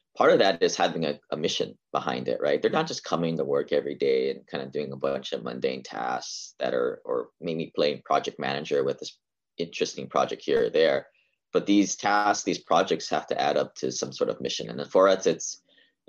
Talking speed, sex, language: 230 wpm, male, English